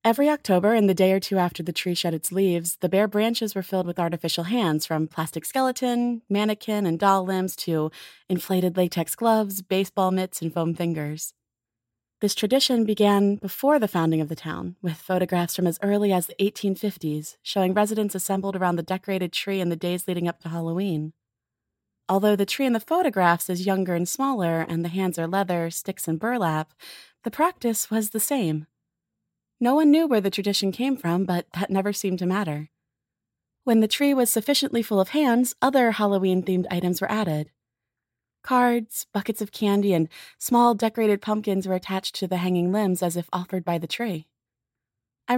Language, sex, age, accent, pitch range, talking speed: English, female, 20-39, American, 170-215 Hz, 185 wpm